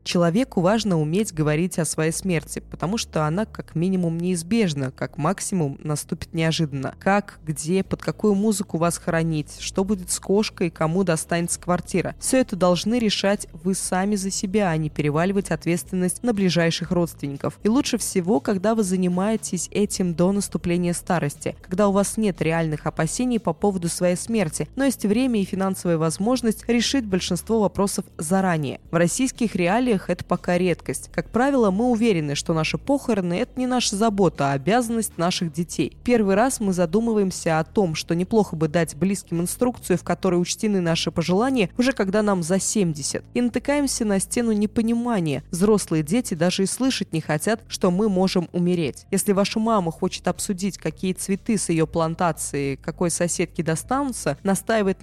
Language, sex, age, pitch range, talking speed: Russian, female, 20-39, 170-215 Hz, 165 wpm